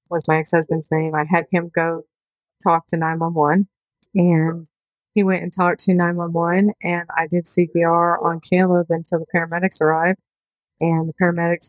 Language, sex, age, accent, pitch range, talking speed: English, female, 40-59, American, 160-175 Hz, 160 wpm